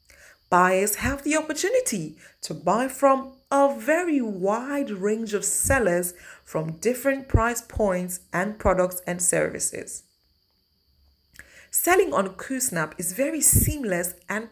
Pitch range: 175-270 Hz